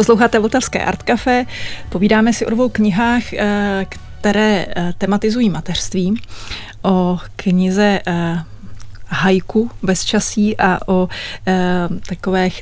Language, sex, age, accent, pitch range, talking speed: Czech, female, 30-49, native, 190-225 Hz, 95 wpm